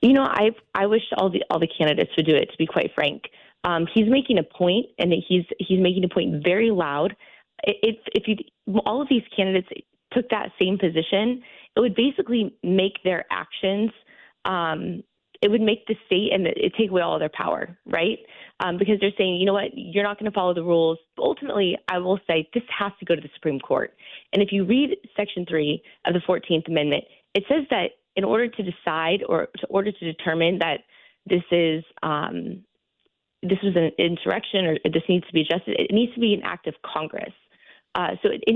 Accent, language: American, English